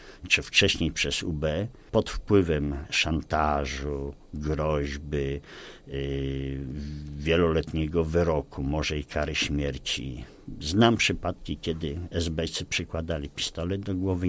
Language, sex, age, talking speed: Polish, male, 50-69, 95 wpm